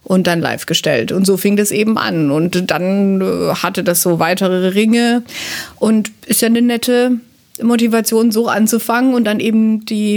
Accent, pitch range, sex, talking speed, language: German, 210-270 Hz, female, 175 wpm, German